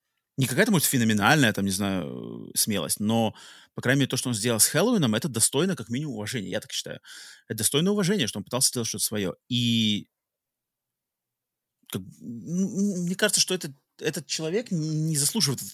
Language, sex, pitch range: Russian, male, 110-150 Hz